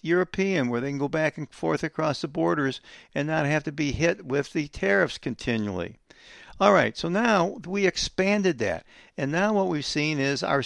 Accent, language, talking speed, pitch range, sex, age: American, English, 195 wpm, 130-180 Hz, male, 60-79